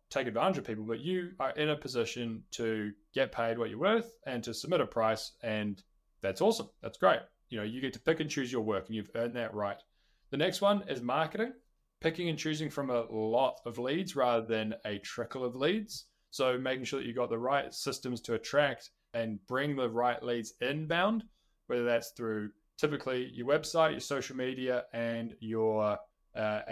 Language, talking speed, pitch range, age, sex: English, 200 wpm, 110-145 Hz, 20-39, male